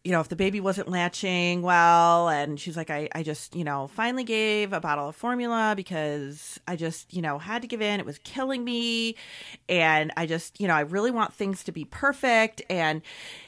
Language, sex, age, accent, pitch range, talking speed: English, female, 30-49, American, 165-215 Hz, 215 wpm